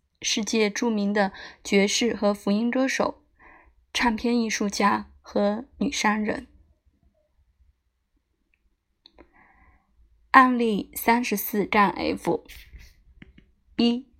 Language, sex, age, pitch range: Chinese, female, 20-39, 190-240 Hz